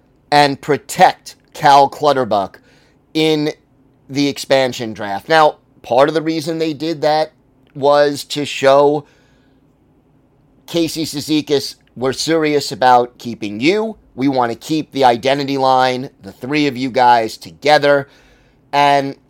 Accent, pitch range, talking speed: American, 130-150 Hz, 125 wpm